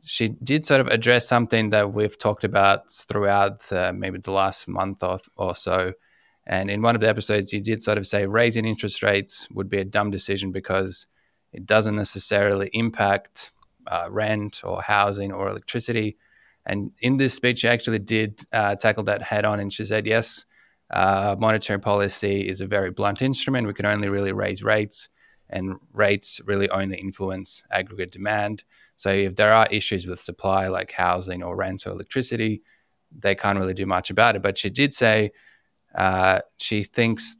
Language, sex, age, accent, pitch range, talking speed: English, male, 20-39, Australian, 95-110 Hz, 180 wpm